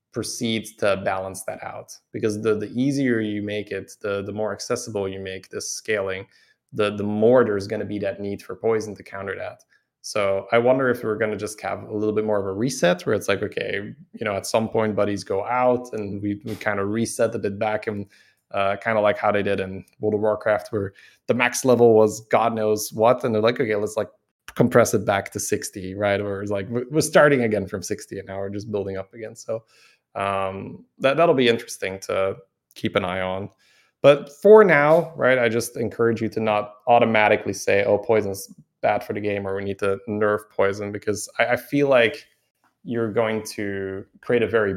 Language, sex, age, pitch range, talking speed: English, male, 20-39, 100-115 Hz, 220 wpm